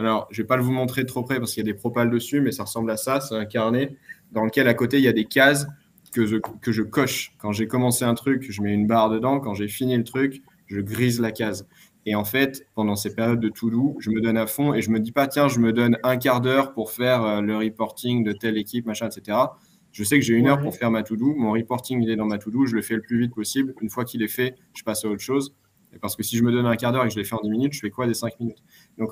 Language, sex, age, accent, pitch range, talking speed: French, male, 20-39, French, 110-130 Hz, 320 wpm